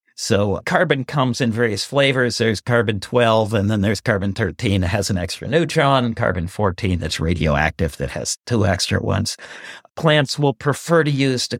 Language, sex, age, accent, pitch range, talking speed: English, male, 50-69, American, 110-155 Hz, 160 wpm